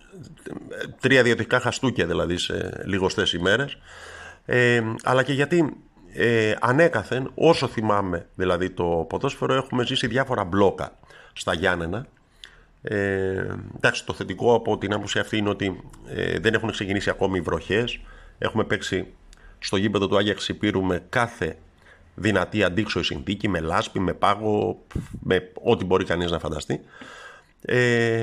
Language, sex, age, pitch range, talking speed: Greek, male, 50-69, 95-130 Hz, 130 wpm